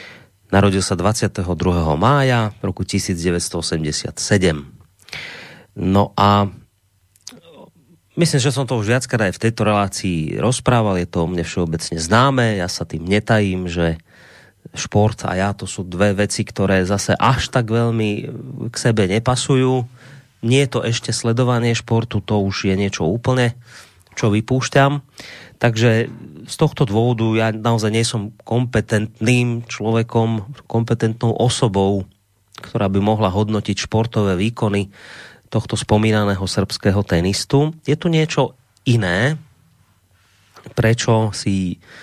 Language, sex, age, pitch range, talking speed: Slovak, male, 30-49, 95-120 Hz, 125 wpm